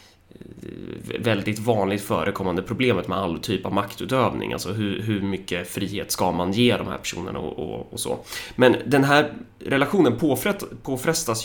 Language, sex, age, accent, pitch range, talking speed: Swedish, male, 20-39, native, 95-120 Hz, 150 wpm